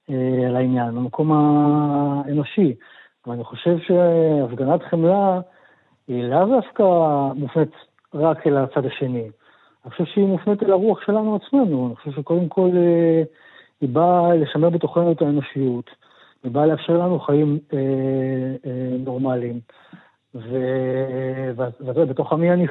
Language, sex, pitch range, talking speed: Hebrew, male, 130-165 Hz, 125 wpm